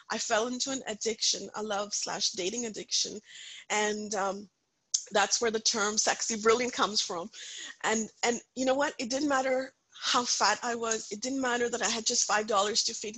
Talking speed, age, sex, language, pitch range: 190 wpm, 30-49, female, English, 210-250 Hz